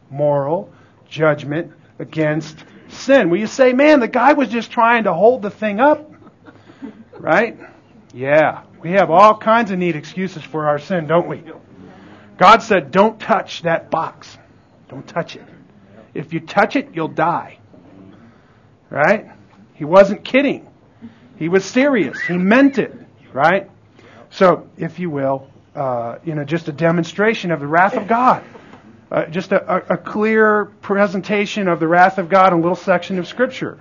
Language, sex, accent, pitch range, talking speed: English, male, American, 145-200 Hz, 160 wpm